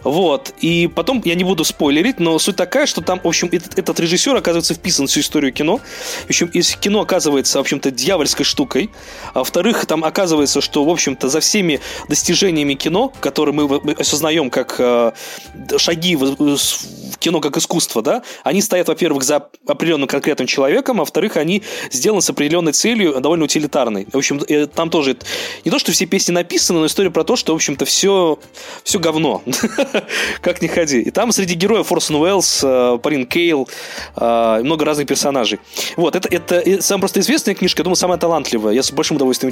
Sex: male